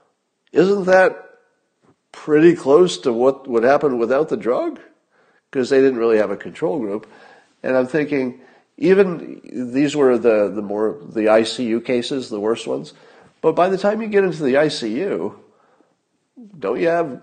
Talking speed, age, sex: 160 wpm, 50-69, male